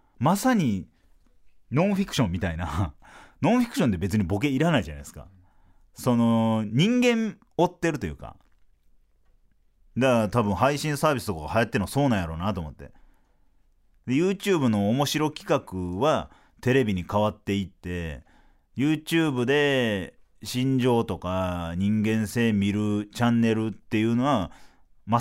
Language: Japanese